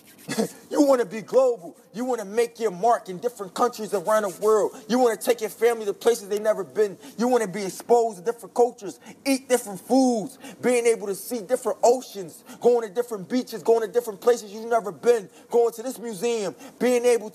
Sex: male